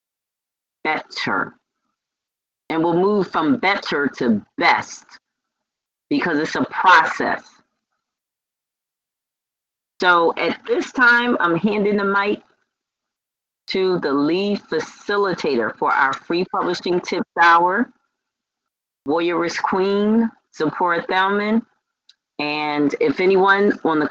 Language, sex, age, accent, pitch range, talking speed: English, female, 40-59, American, 160-230 Hz, 95 wpm